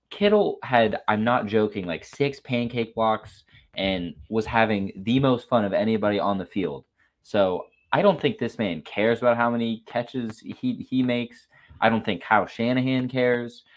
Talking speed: 175 wpm